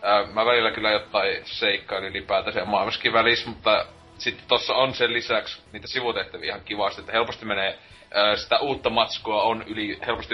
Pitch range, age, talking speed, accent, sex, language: 100-115 Hz, 30-49, 155 wpm, native, male, Finnish